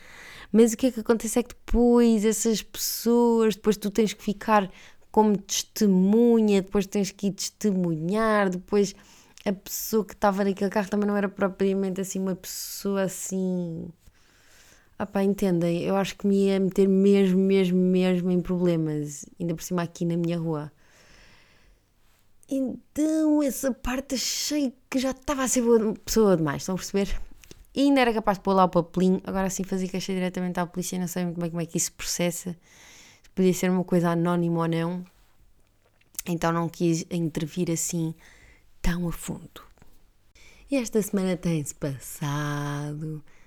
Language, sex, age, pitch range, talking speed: Portuguese, female, 20-39, 165-210 Hz, 165 wpm